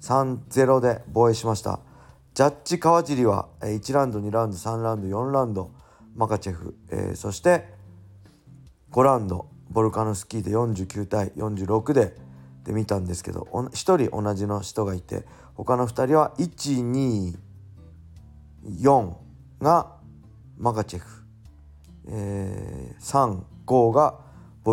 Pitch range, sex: 100-135 Hz, male